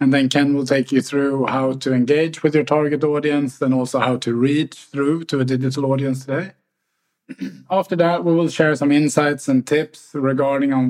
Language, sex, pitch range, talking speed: English, male, 130-155 Hz, 200 wpm